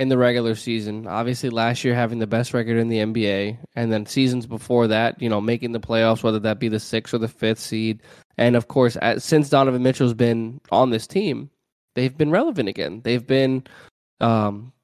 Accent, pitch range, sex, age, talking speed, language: American, 110-125 Hz, male, 20-39, 200 wpm, English